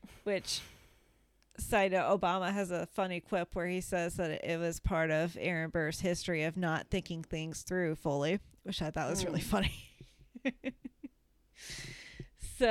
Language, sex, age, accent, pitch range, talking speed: English, female, 30-49, American, 165-200 Hz, 150 wpm